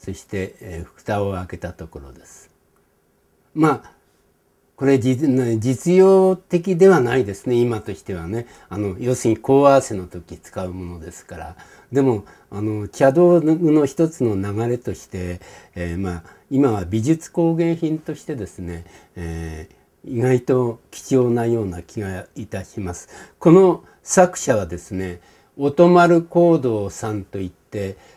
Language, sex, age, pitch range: Japanese, male, 60-79, 100-145 Hz